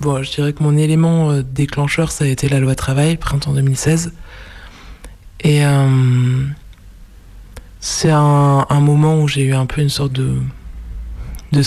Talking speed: 160 wpm